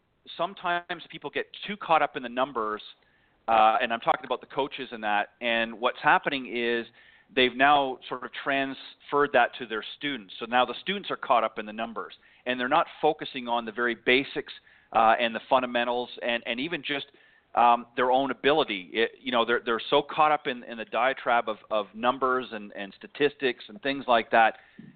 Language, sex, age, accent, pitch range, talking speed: English, male, 40-59, American, 120-140 Hz, 195 wpm